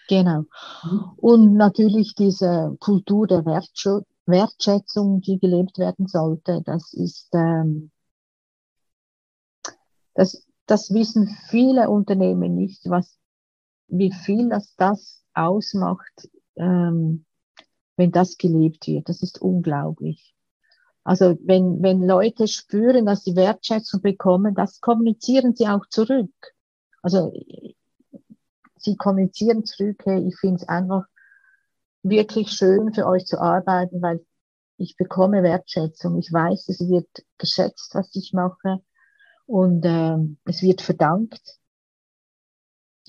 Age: 50-69